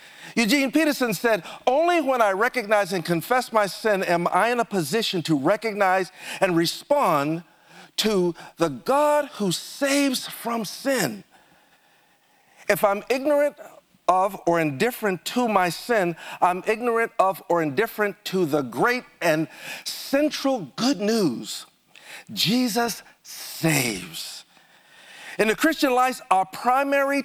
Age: 50-69